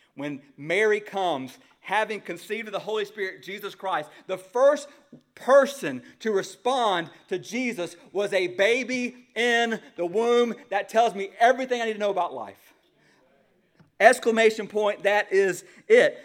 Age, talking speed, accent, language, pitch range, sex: 40-59, 145 wpm, American, English, 190-250 Hz, male